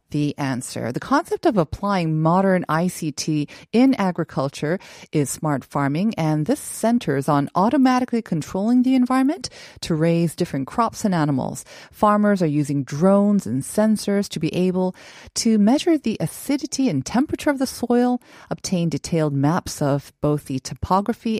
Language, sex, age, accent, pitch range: Korean, female, 40-59, American, 150-220 Hz